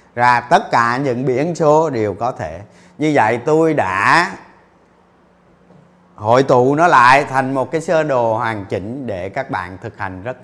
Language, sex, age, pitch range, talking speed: Vietnamese, male, 30-49, 105-145 Hz, 170 wpm